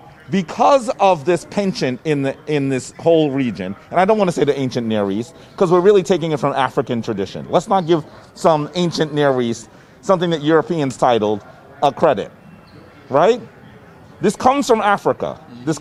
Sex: male